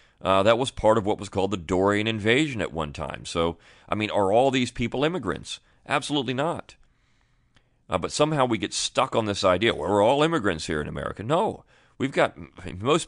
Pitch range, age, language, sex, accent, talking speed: 80-105 Hz, 40-59, English, male, American, 195 wpm